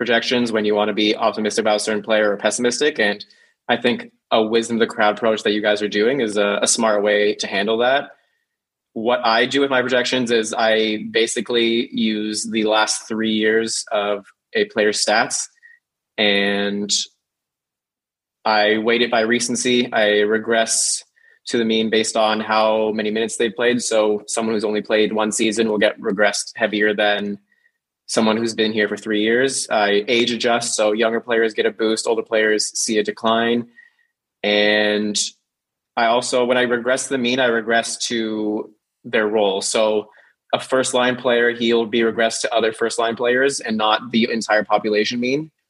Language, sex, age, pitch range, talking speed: English, male, 20-39, 105-120 Hz, 180 wpm